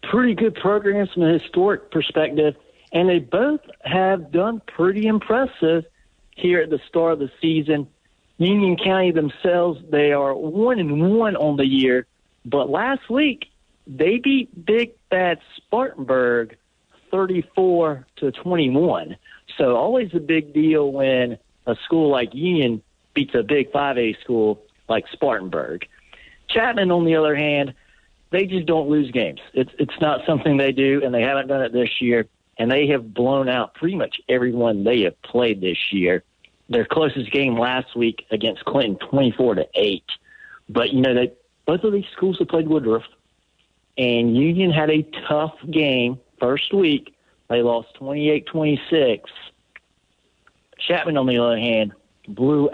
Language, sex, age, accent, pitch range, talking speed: English, male, 50-69, American, 125-175 Hz, 150 wpm